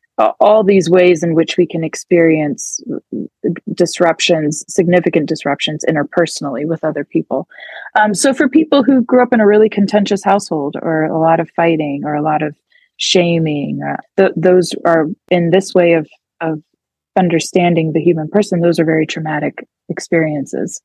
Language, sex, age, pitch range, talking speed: English, female, 20-39, 160-215 Hz, 160 wpm